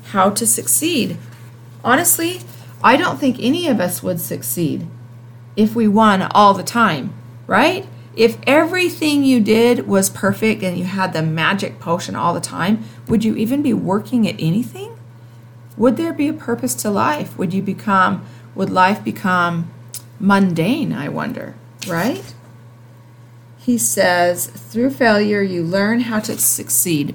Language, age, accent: English, 40-59, American